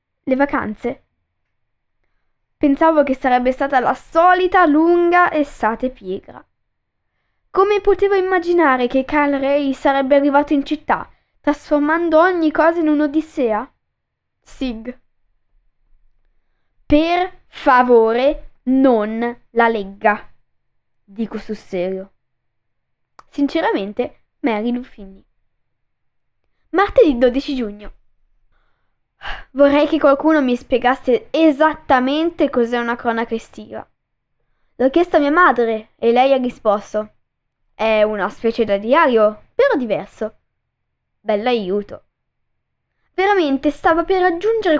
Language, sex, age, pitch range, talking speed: Italian, female, 10-29, 225-315 Hz, 95 wpm